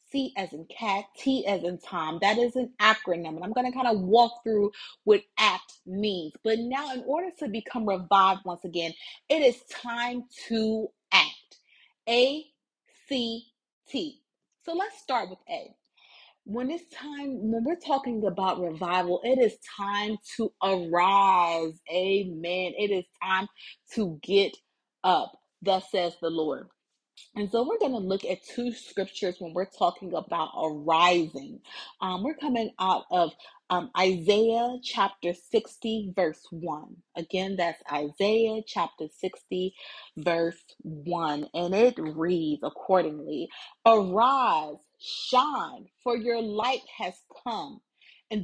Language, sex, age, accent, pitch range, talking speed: English, female, 30-49, American, 180-245 Hz, 140 wpm